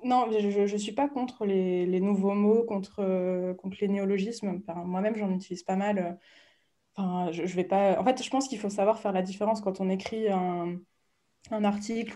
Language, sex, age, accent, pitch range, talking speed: French, female, 20-39, French, 185-210 Hz, 205 wpm